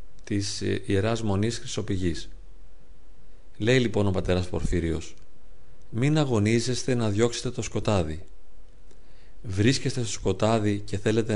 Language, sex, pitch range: Greek, male, 95-130 Hz